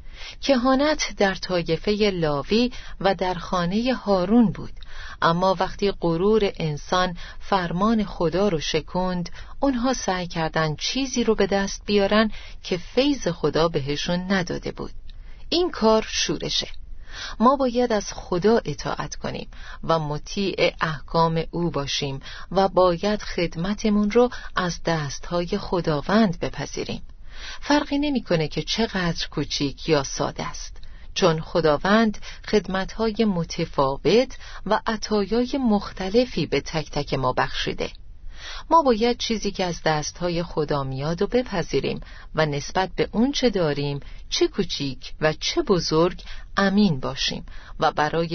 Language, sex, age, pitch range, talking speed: Persian, female, 40-59, 160-220 Hz, 120 wpm